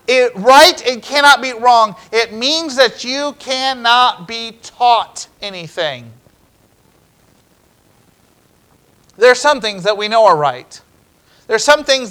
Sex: male